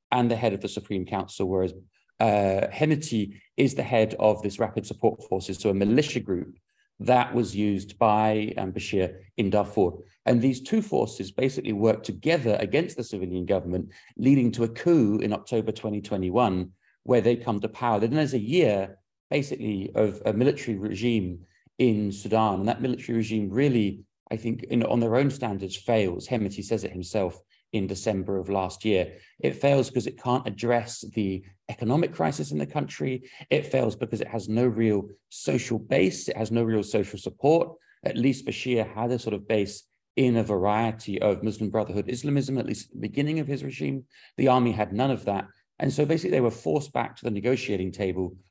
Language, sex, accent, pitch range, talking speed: English, male, British, 100-125 Hz, 190 wpm